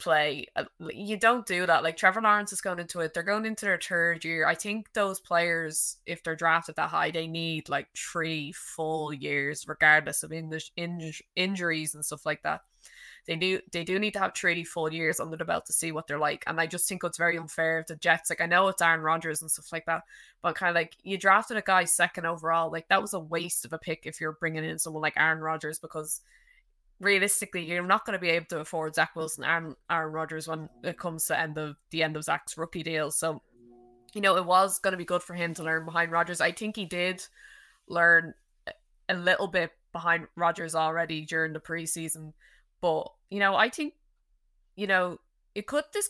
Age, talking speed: 20-39, 220 wpm